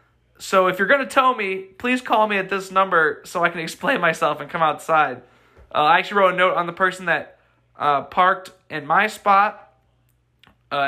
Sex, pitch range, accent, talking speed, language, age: male, 165-205 Hz, American, 200 wpm, English, 20-39